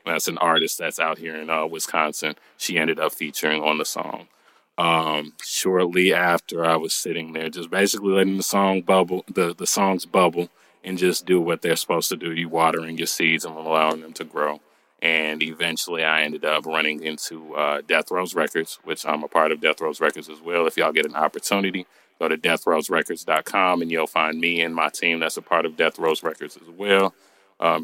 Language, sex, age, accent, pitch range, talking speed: English, male, 30-49, American, 80-90 Hz, 205 wpm